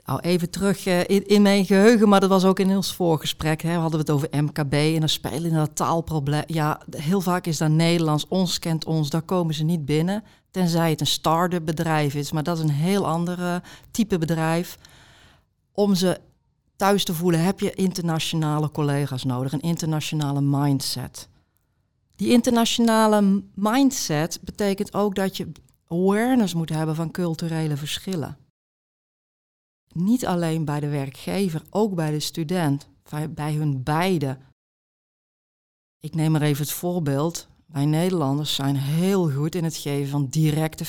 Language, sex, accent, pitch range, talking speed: Dutch, female, Dutch, 150-185 Hz, 155 wpm